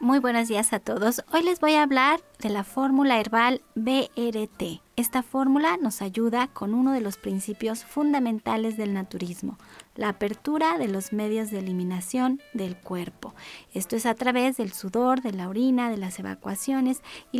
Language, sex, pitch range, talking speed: Spanish, female, 215-265 Hz, 170 wpm